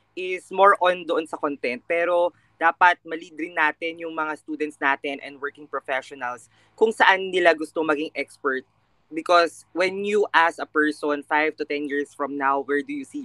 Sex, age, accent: female, 20-39, native